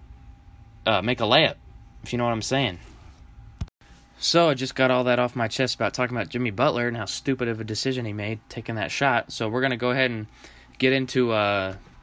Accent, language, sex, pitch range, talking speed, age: American, English, male, 105-130 Hz, 225 wpm, 20-39